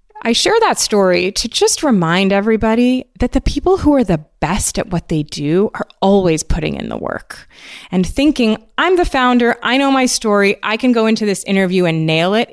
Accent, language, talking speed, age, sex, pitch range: American, English, 205 wpm, 20-39, female, 180-245 Hz